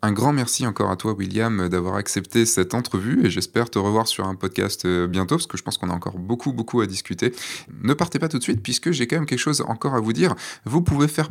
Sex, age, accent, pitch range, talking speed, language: male, 20-39, French, 95-125 Hz, 260 wpm, French